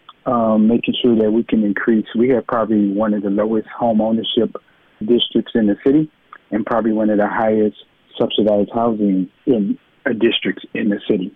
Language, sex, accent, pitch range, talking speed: English, male, American, 100-115 Hz, 175 wpm